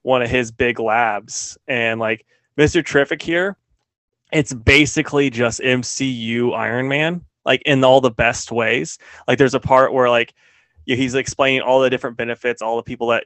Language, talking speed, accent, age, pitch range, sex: English, 170 wpm, American, 20-39, 120-145 Hz, male